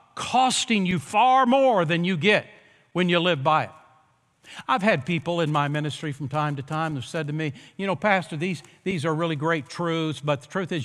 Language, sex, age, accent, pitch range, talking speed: English, male, 60-79, American, 155-205 Hz, 215 wpm